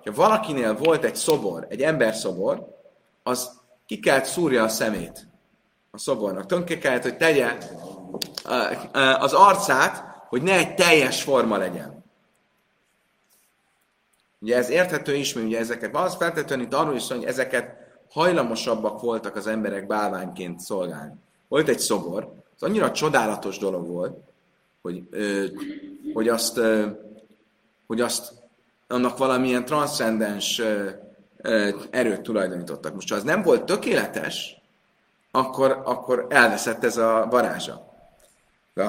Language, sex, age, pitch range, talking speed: Hungarian, male, 30-49, 110-130 Hz, 120 wpm